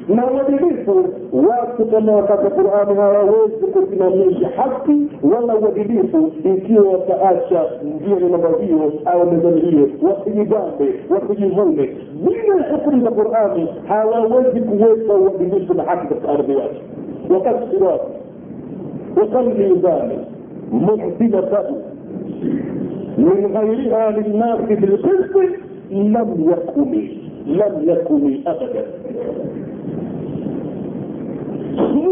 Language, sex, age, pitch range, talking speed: Swahili, male, 50-69, 200-265 Hz, 85 wpm